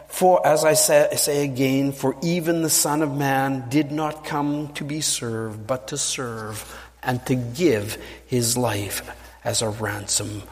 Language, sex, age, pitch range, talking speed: English, male, 50-69, 110-170 Hz, 165 wpm